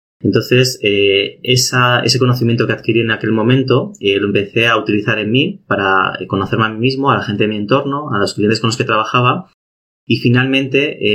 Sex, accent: male, Spanish